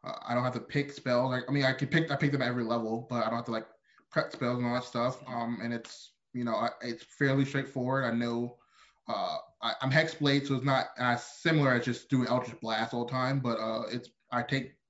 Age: 20-39